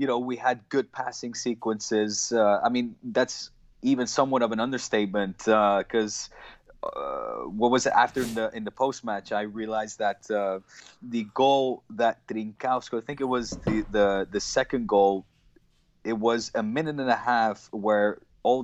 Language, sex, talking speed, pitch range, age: English, male, 175 wpm, 105-125 Hz, 20-39